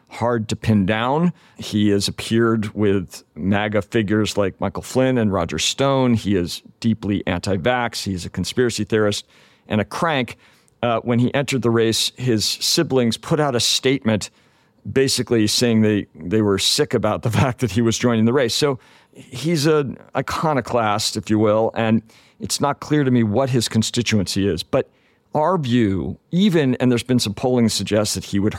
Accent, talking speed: American, 175 wpm